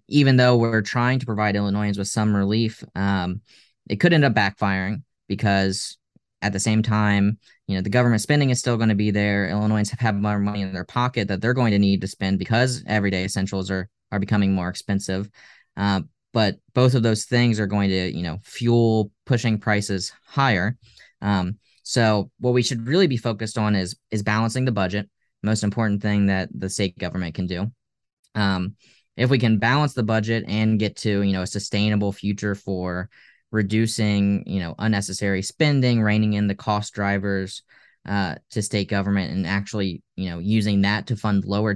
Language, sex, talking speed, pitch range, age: English, male, 190 wpm, 100-115 Hz, 10-29